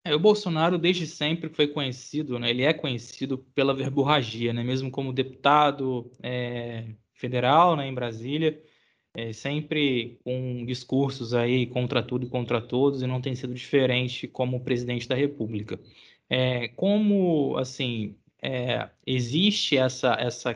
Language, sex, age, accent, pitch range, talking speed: Portuguese, male, 20-39, Brazilian, 125-155 Hz, 145 wpm